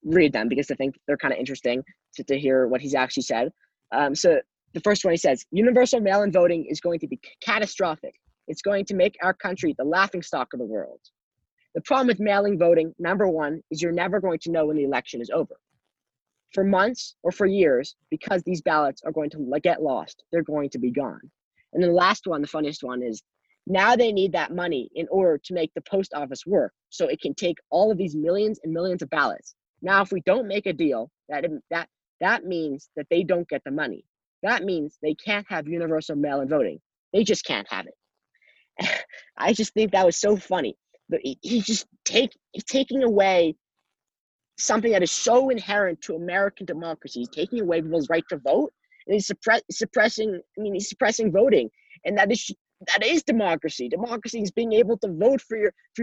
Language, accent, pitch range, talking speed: English, American, 160-215 Hz, 210 wpm